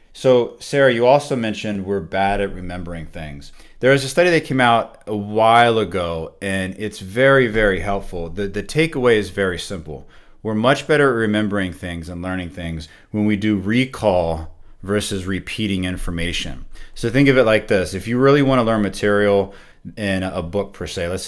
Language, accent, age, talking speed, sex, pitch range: English, American, 30-49, 185 wpm, male, 95-115 Hz